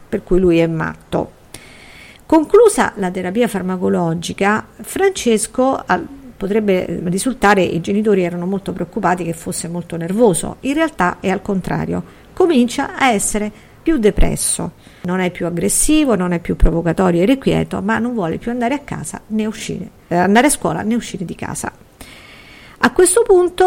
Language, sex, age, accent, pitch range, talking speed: Italian, female, 50-69, native, 180-245 Hz, 155 wpm